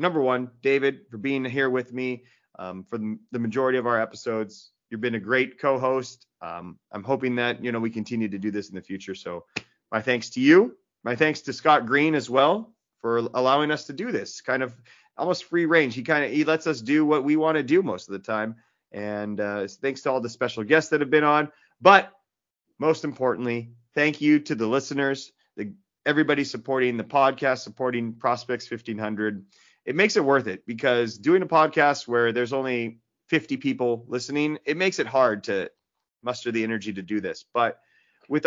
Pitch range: 115-145 Hz